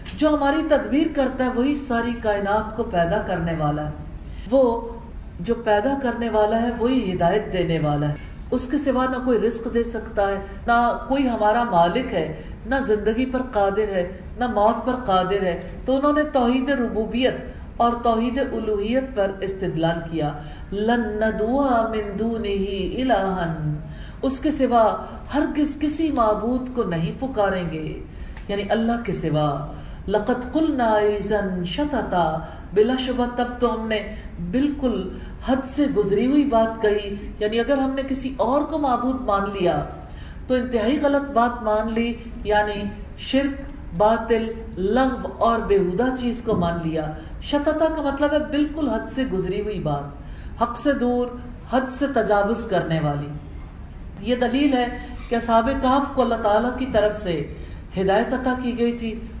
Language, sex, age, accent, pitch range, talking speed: English, female, 50-69, Indian, 200-255 Hz, 135 wpm